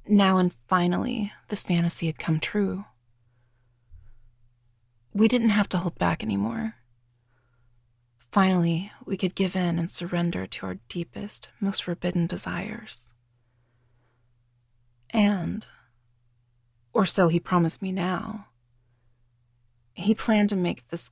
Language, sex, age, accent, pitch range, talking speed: English, female, 20-39, American, 120-190 Hz, 115 wpm